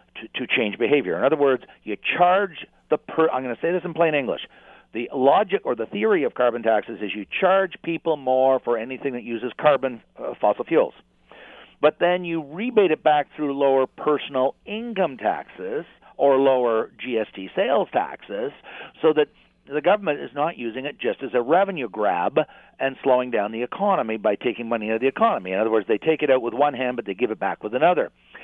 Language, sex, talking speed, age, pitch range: English, male, 205 wpm, 50-69, 125-185 Hz